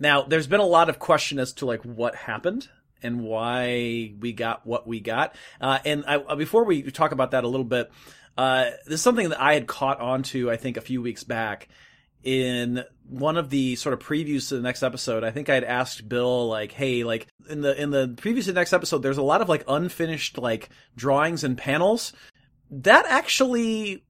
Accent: American